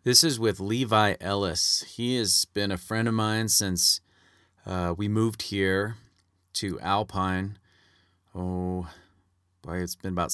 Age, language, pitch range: 30-49, English, 90-105 Hz